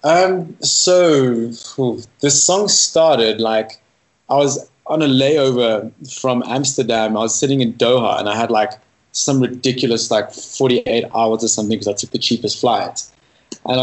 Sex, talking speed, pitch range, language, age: male, 155 wpm, 110-130 Hz, English, 20-39